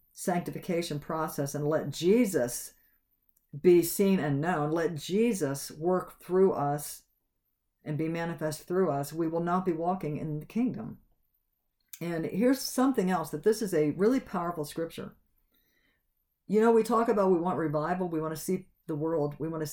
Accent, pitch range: American, 145-190 Hz